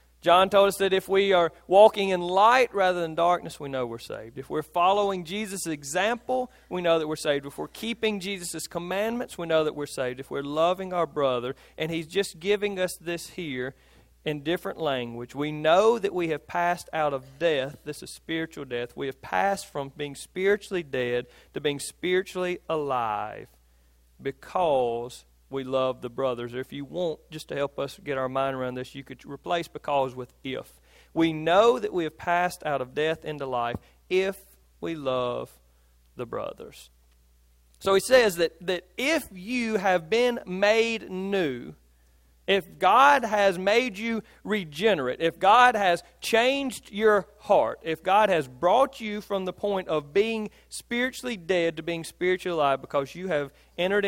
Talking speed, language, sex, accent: 175 wpm, English, male, American